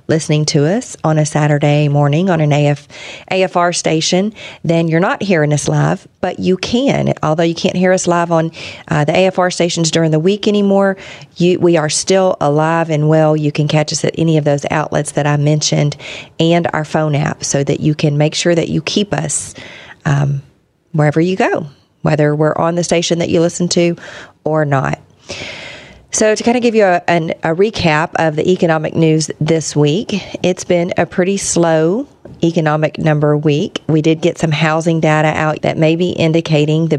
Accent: American